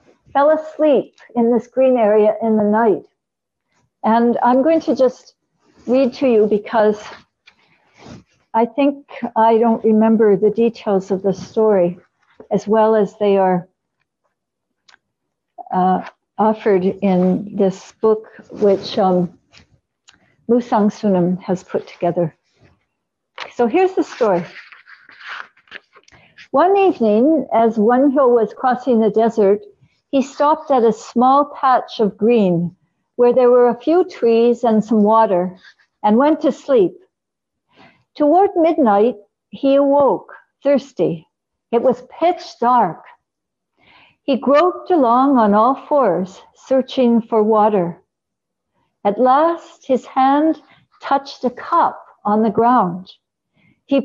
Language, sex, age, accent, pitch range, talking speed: English, female, 60-79, American, 210-285 Hz, 120 wpm